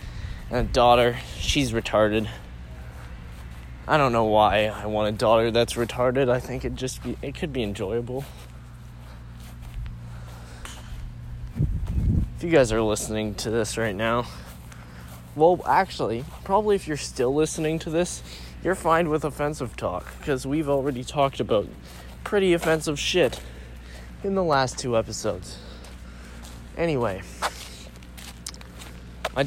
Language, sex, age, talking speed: English, male, 20-39, 120 wpm